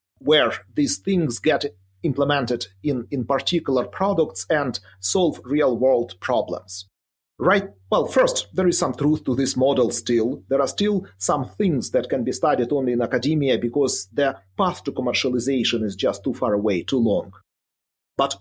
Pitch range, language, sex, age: 115-155 Hz, English, male, 40-59